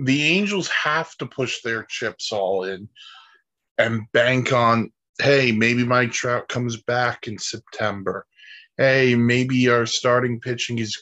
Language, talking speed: English, 140 wpm